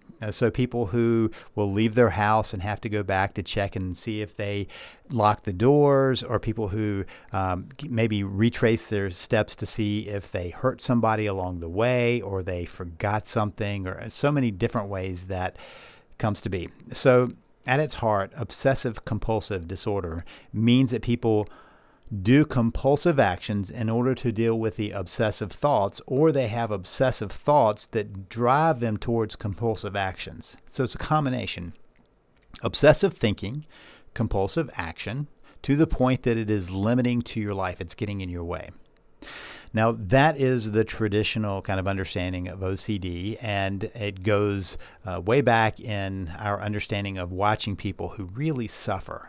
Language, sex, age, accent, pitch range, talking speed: English, male, 50-69, American, 100-115 Hz, 160 wpm